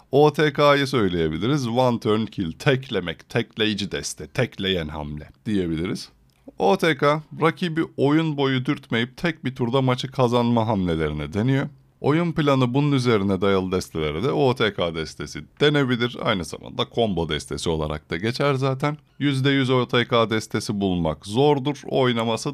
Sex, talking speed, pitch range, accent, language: male, 120 wpm, 95-135 Hz, native, Turkish